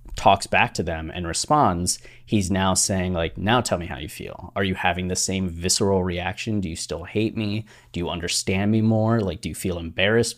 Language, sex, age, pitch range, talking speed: English, male, 30-49, 90-115 Hz, 220 wpm